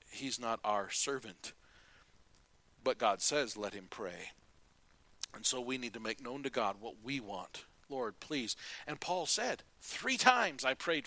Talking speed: 170 wpm